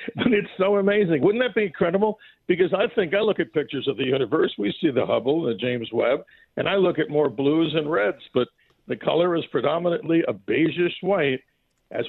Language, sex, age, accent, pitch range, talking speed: English, male, 50-69, American, 135-180 Hz, 210 wpm